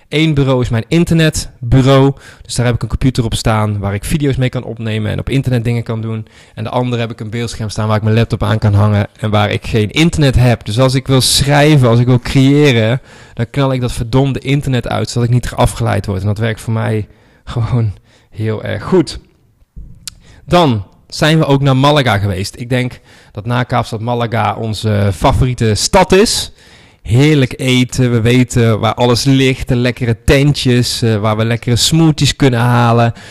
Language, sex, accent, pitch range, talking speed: Dutch, male, Dutch, 110-130 Hz, 195 wpm